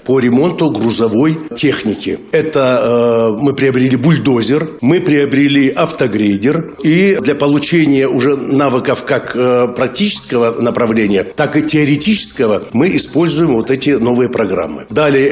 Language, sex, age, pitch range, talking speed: Russian, male, 60-79, 120-155 Hz, 120 wpm